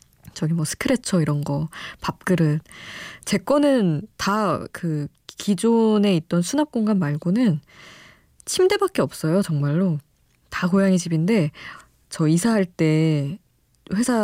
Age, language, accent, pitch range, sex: 20-39, Korean, native, 155-210 Hz, female